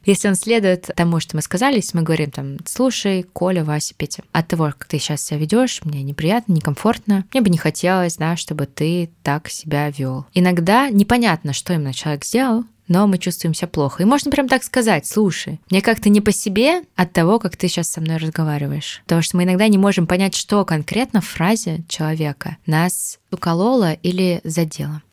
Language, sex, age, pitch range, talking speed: Russian, female, 20-39, 150-185 Hz, 195 wpm